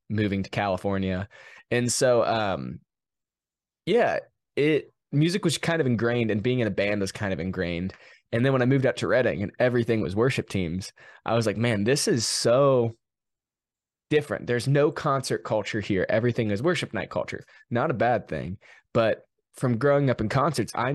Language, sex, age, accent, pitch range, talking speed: English, male, 20-39, American, 105-130 Hz, 185 wpm